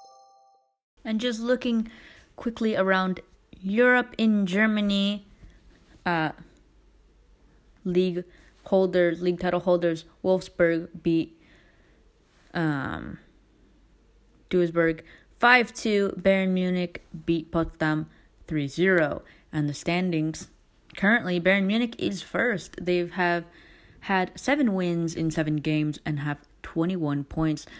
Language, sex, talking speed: English, female, 100 wpm